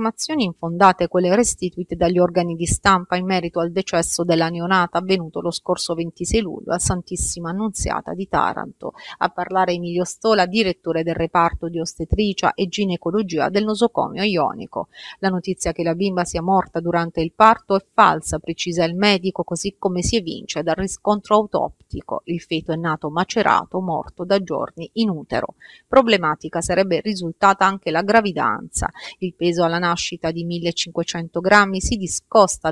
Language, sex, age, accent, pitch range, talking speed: Italian, female, 30-49, native, 170-200 Hz, 155 wpm